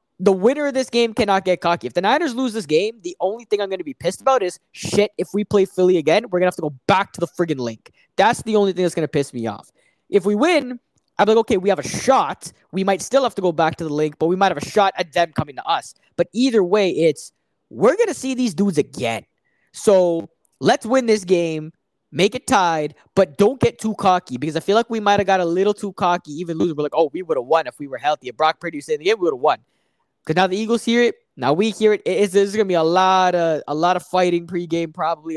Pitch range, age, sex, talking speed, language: 165-210 Hz, 20-39, male, 280 wpm, English